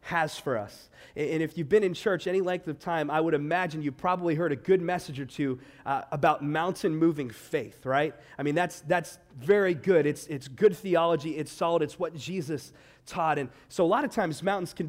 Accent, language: American, English